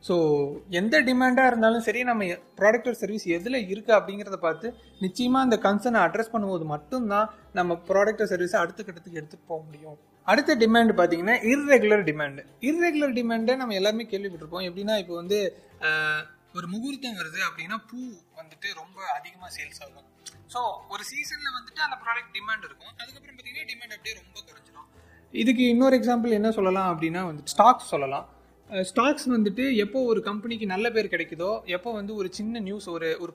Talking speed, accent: 155 wpm, native